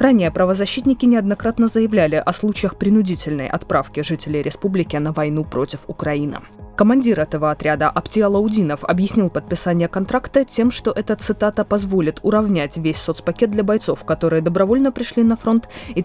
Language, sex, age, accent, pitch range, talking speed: Russian, female, 20-39, native, 150-210 Hz, 140 wpm